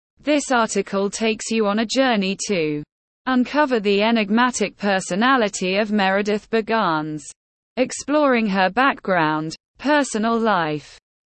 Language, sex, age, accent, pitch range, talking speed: English, female, 20-39, British, 185-240 Hz, 105 wpm